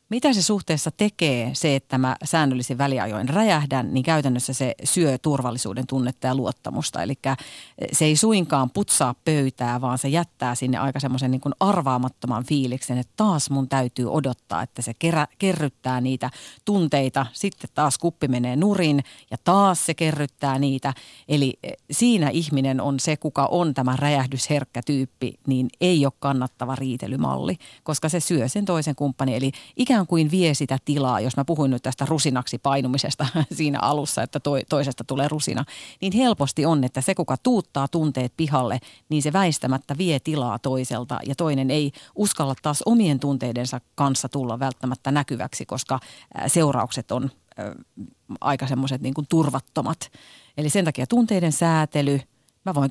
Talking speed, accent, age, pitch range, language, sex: 150 wpm, native, 40-59, 130-160 Hz, Finnish, female